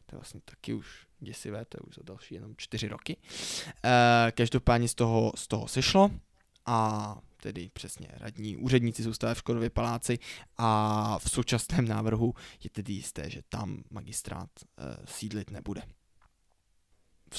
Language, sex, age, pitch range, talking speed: Czech, male, 20-39, 105-120 Hz, 145 wpm